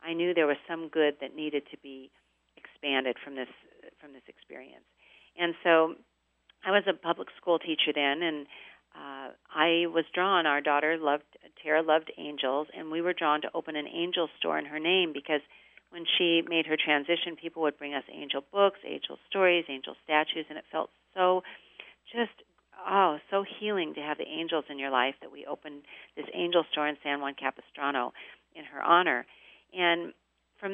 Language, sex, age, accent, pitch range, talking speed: English, female, 40-59, American, 145-170 Hz, 185 wpm